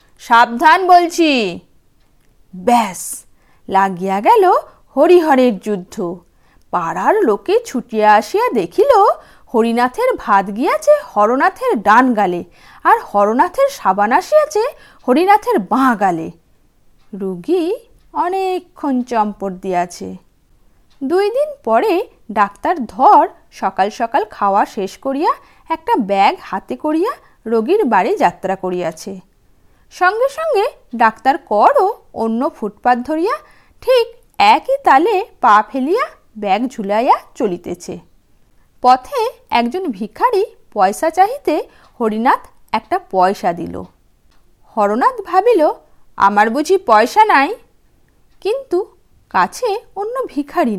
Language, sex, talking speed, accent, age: Bengali, female, 95 wpm, native, 50-69